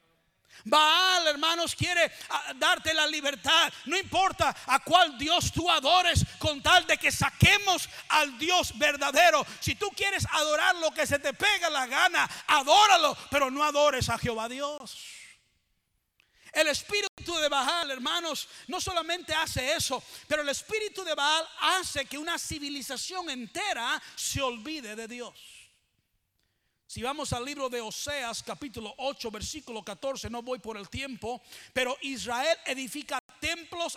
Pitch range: 240-330 Hz